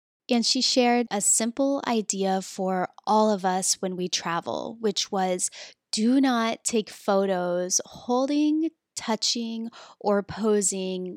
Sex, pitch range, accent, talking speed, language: female, 190-240 Hz, American, 125 wpm, English